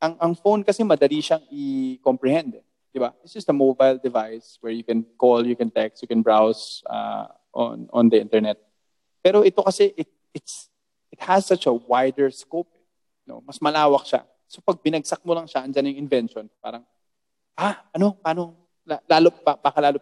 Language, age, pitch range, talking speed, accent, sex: Filipino, 20-39, 120-165 Hz, 180 wpm, native, male